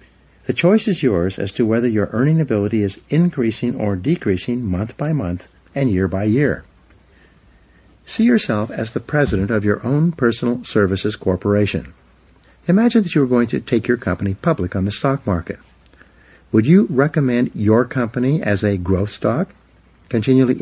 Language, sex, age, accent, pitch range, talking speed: English, male, 60-79, American, 95-135 Hz, 165 wpm